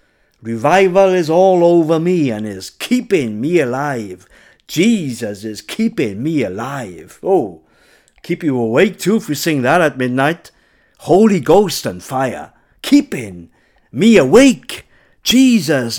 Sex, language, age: male, English, 60-79